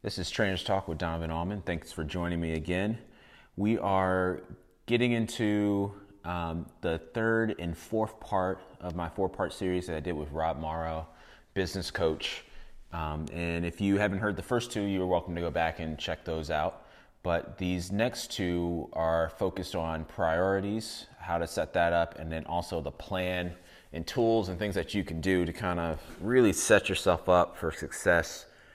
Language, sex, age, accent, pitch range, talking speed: English, male, 30-49, American, 80-95 Hz, 180 wpm